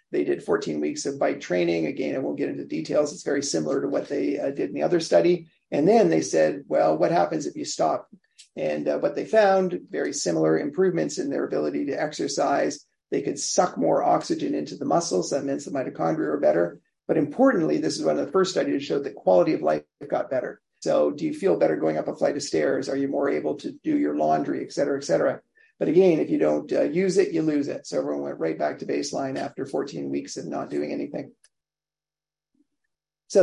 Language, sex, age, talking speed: English, male, 40-59, 230 wpm